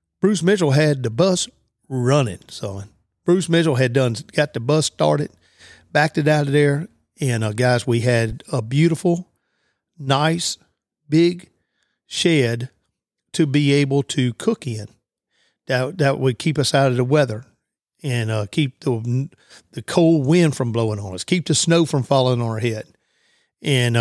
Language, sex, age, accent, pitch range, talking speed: English, male, 50-69, American, 120-150 Hz, 160 wpm